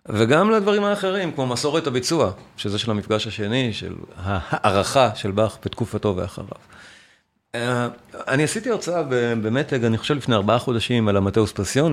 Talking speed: 140 wpm